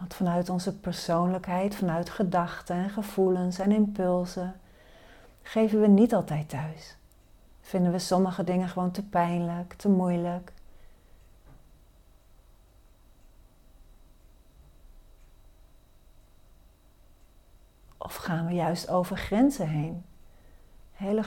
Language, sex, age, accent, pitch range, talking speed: Dutch, female, 40-59, Dutch, 165-210 Hz, 90 wpm